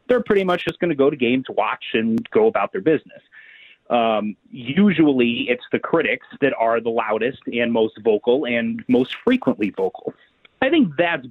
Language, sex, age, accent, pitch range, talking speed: English, male, 30-49, American, 115-145 Hz, 180 wpm